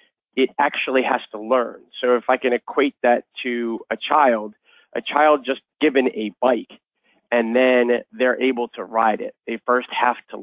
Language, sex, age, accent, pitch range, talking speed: English, male, 30-49, American, 115-135 Hz, 180 wpm